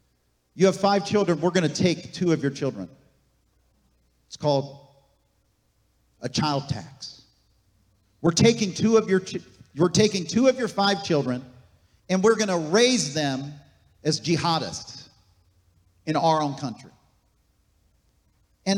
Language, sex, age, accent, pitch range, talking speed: English, male, 50-69, American, 135-195 Hz, 135 wpm